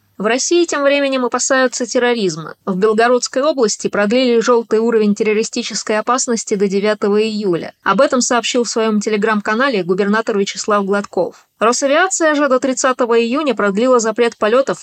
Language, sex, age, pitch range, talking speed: Russian, female, 20-39, 200-245 Hz, 140 wpm